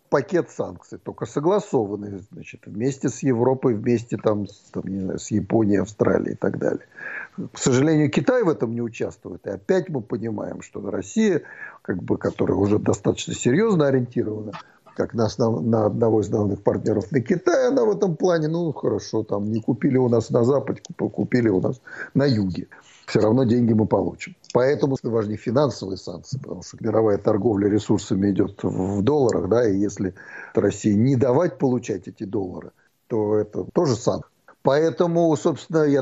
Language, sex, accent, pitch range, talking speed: Russian, male, native, 105-140 Hz, 155 wpm